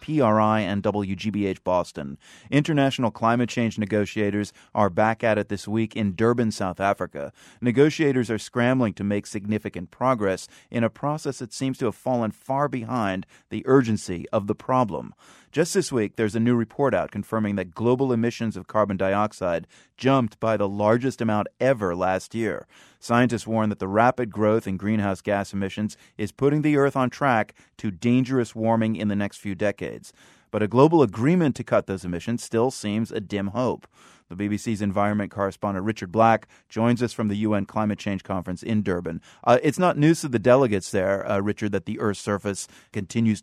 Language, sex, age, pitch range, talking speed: English, male, 30-49, 100-120 Hz, 180 wpm